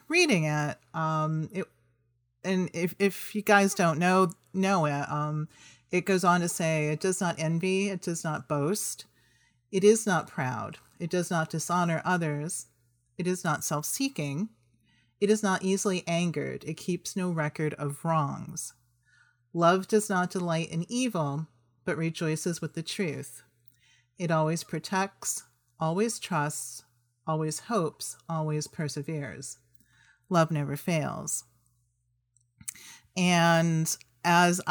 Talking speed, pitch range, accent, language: 130 wpm, 130-175 Hz, American, English